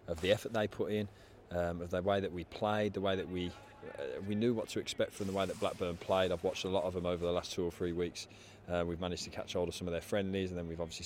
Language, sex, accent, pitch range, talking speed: English, male, British, 85-100 Hz, 310 wpm